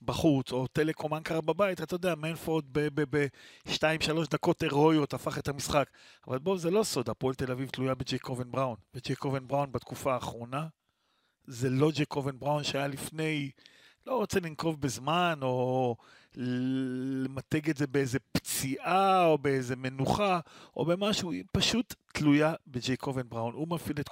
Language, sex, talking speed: Hebrew, male, 155 wpm